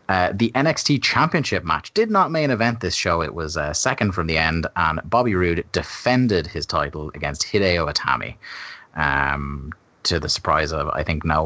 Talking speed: 190 wpm